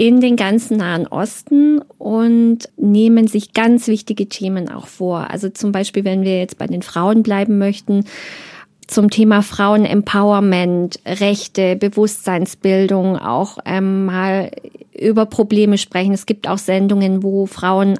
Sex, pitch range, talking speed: female, 195-225 Hz, 135 wpm